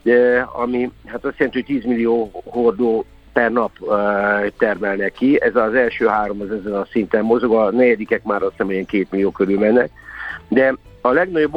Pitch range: 105-125 Hz